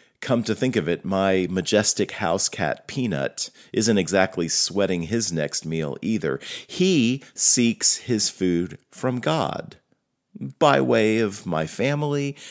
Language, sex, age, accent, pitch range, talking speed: English, male, 40-59, American, 85-135 Hz, 135 wpm